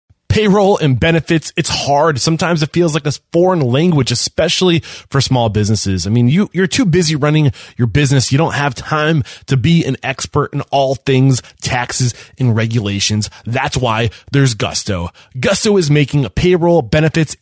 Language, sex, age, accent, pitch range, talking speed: English, male, 20-39, American, 120-160 Hz, 160 wpm